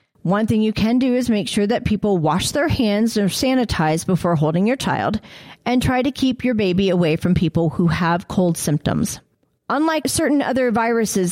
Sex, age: female, 40-59